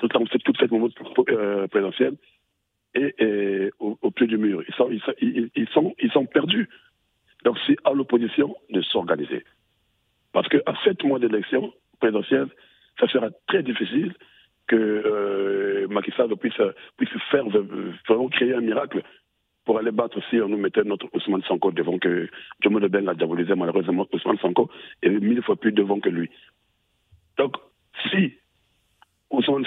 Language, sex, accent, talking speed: French, male, French, 160 wpm